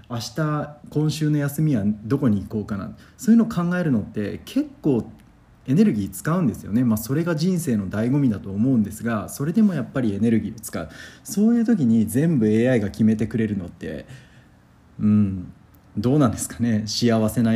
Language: Japanese